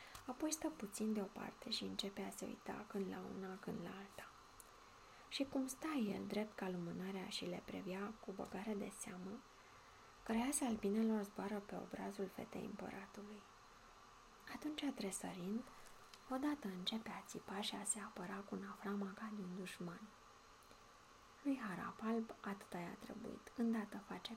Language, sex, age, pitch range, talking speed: Romanian, female, 20-39, 195-225 Hz, 140 wpm